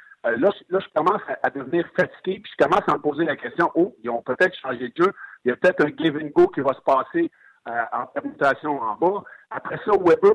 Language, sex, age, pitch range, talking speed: French, male, 60-79, 130-185 Hz, 260 wpm